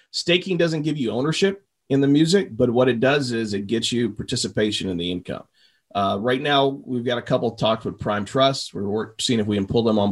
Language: English